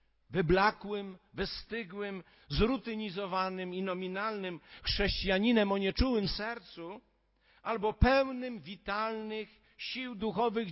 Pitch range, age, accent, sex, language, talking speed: 180-230 Hz, 50-69, native, male, Polish, 80 wpm